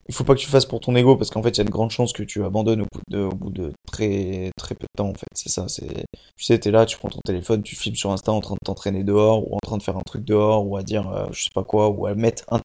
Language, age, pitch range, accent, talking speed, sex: French, 20-39, 105-125 Hz, French, 350 wpm, male